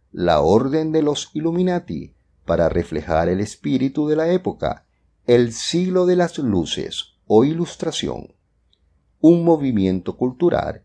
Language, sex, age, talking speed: English, male, 50-69, 120 wpm